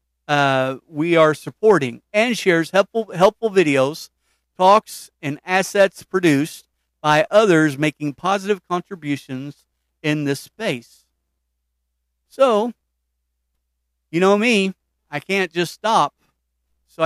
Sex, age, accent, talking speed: male, 40-59, American, 105 wpm